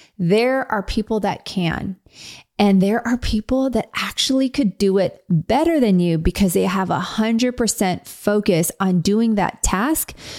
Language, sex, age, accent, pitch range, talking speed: English, female, 30-49, American, 195-245 Hz, 160 wpm